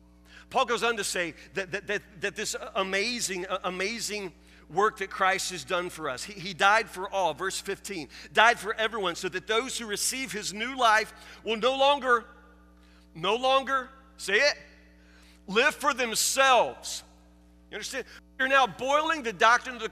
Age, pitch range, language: 40-59, 190-250 Hz, English